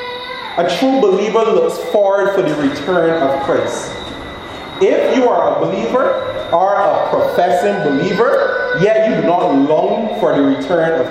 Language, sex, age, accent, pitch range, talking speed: English, male, 30-49, American, 165-270 Hz, 150 wpm